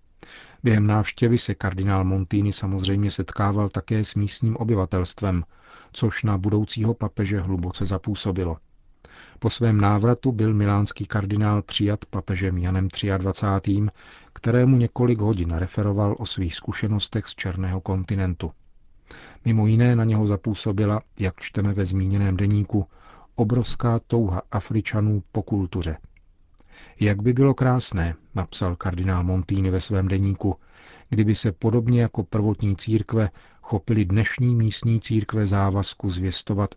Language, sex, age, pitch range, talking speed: Czech, male, 40-59, 95-110 Hz, 120 wpm